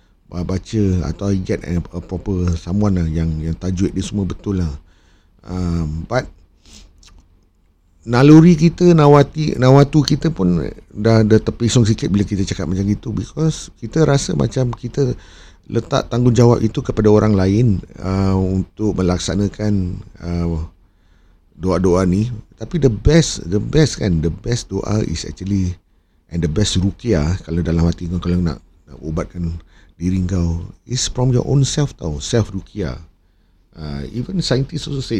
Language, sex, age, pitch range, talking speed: Malay, male, 50-69, 80-115 Hz, 145 wpm